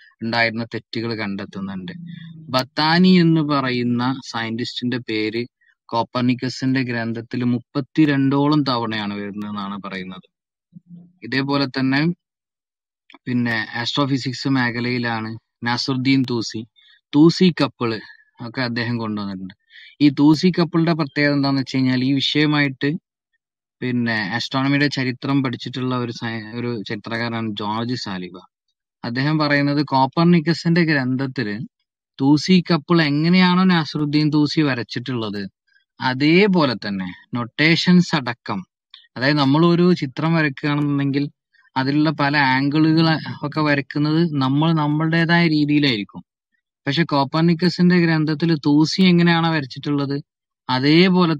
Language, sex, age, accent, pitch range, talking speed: Malayalam, male, 20-39, native, 120-160 Hz, 90 wpm